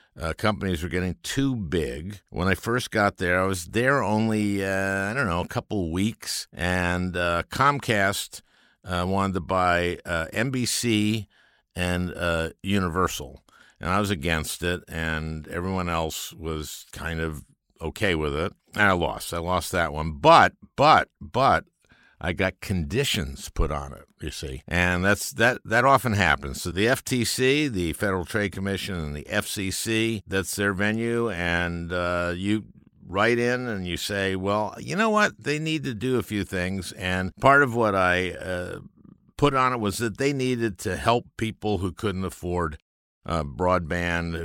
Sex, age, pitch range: male, 60-79, 85-110 Hz